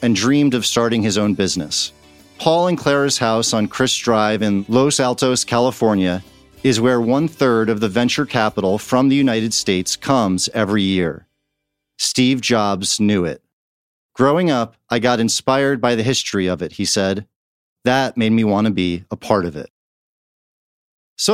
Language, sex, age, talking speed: English, male, 40-59, 165 wpm